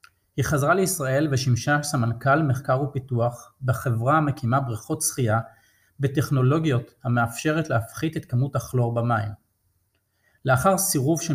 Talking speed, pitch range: 110 wpm, 115-140 Hz